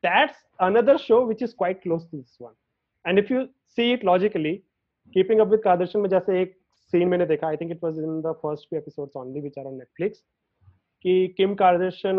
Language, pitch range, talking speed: Hindi, 150-190 Hz, 210 wpm